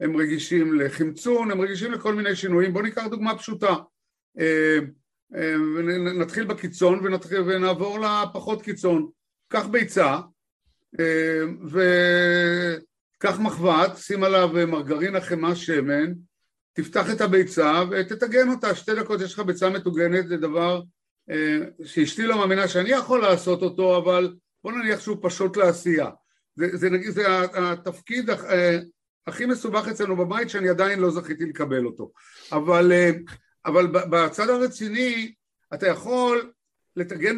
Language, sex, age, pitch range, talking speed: Hebrew, male, 60-79, 170-210 Hz, 120 wpm